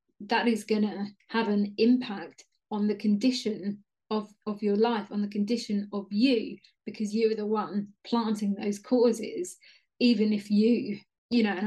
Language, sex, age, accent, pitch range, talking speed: English, female, 30-49, British, 205-225 Hz, 170 wpm